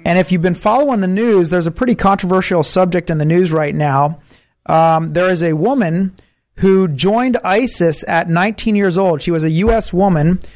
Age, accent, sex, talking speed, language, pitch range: 30-49, American, male, 195 wpm, English, 165-195 Hz